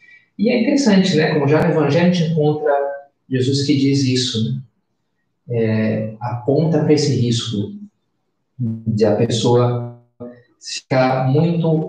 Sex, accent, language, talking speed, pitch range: male, Brazilian, Portuguese, 125 wpm, 115-150 Hz